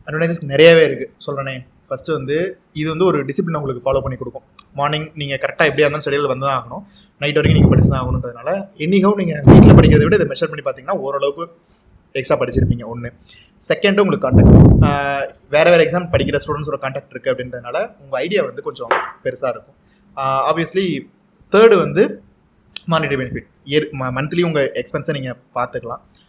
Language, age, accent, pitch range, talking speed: Tamil, 20-39, native, 130-175 Hz, 160 wpm